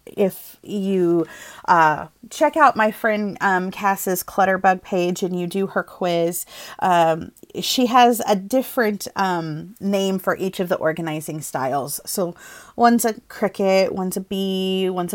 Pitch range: 175-215 Hz